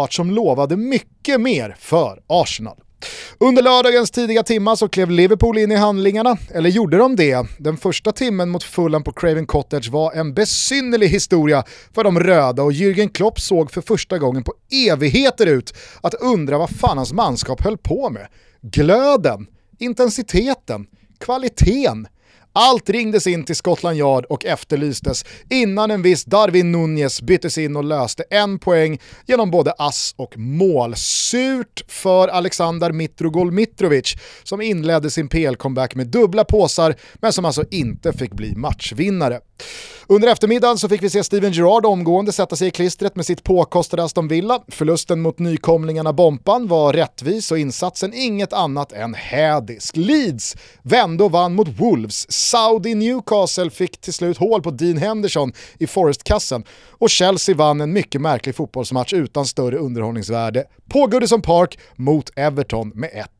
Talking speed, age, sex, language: 150 wpm, 30-49, male, Swedish